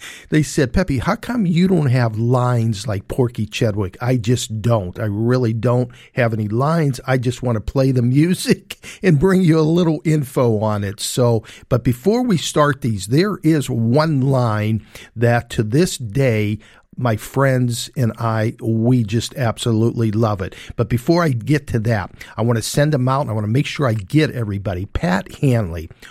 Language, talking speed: English, 190 wpm